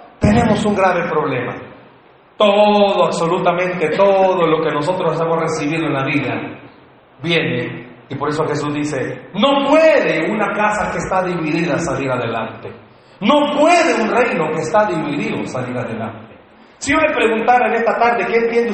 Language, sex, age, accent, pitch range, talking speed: Spanish, male, 40-59, Mexican, 175-245 Hz, 155 wpm